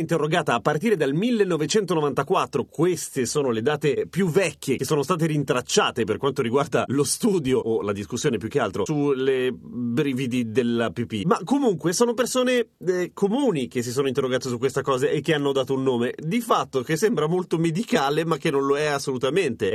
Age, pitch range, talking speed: 30-49, 140-210 Hz, 180 wpm